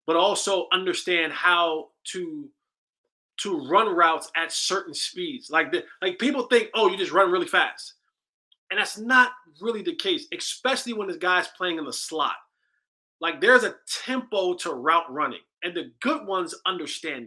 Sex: male